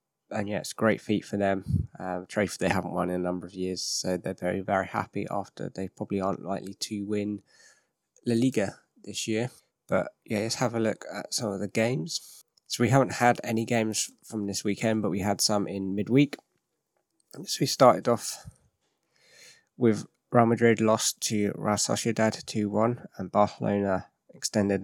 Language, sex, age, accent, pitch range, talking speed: English, male, 20-39, British, 100-115 Hz, 180 wpm